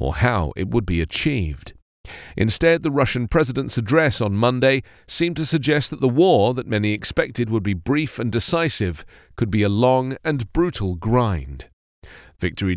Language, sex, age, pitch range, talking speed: English, male, 40-59, 100-135 Hz, 165 wpm